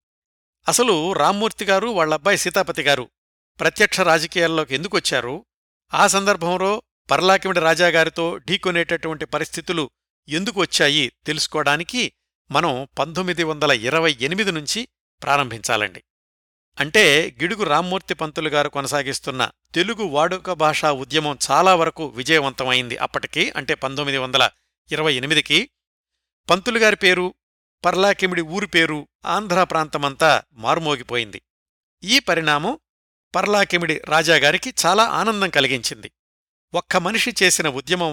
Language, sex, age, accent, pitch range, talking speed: Telugu, male, 60-79, native, 140-185 Hz, 90 wpm